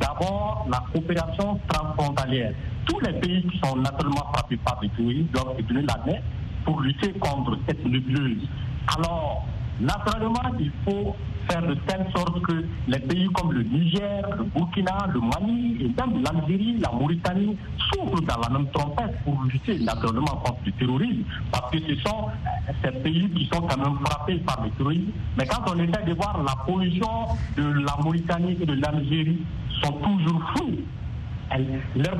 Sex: male